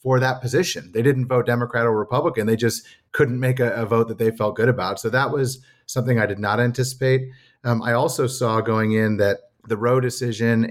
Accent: American